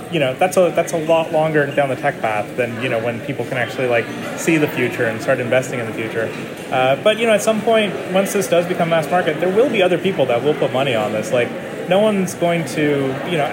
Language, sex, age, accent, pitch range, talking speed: English, male, 30-49, American, 135-175 Hz, 265 wpm